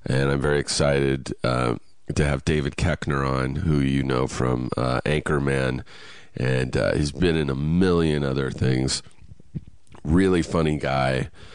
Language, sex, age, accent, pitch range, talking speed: English, male, 30-49, American, 70-85 Hz, 145 wpm